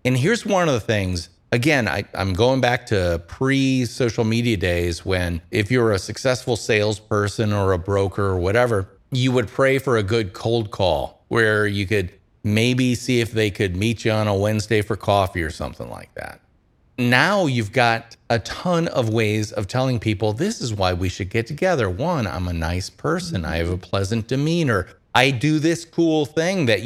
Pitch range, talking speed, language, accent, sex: 110-150 Hz, 190 wpm, English, American, male